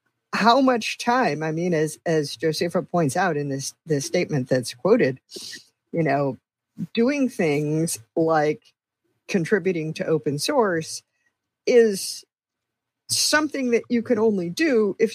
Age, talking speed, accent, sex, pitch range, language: 50-69, 130 wpm, American, female, 140-175 Hz, English